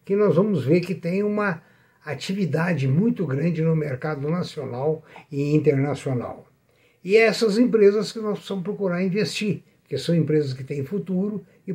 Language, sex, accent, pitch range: Portuguese, male, Brazilian, 140-210 Hz